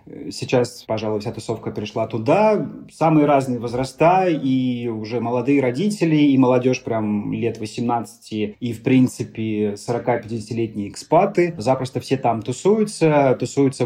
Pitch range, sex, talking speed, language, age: 115-145 Hz, male, 120 wpm, Russian, 30-49